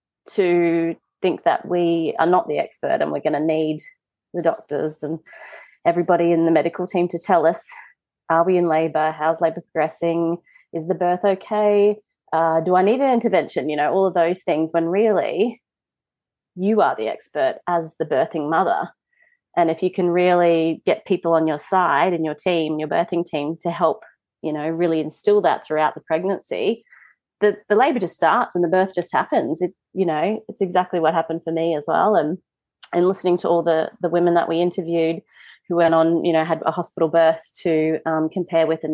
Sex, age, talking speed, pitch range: female, 30-49, 200 wpm, 165-195 Hz